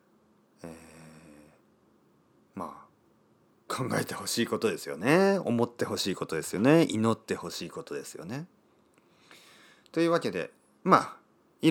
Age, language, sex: 40-59, Japanese, male